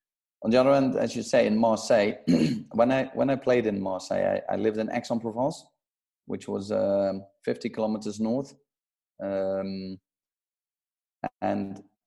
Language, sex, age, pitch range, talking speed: English, male, 30-49, 95-120 Hz, 145 wpm